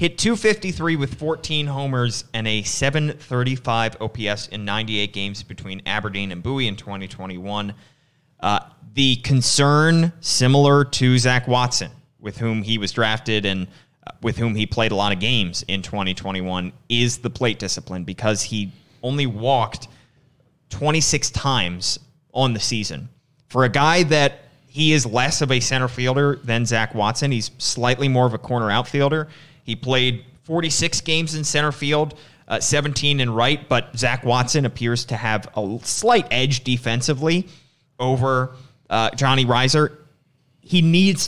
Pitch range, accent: 110-145 Hz, American